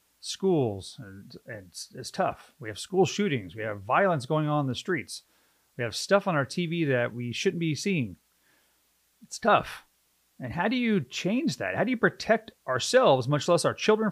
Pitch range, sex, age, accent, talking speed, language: 125-190 Hz, male, 40-59, American, 190 wpm, English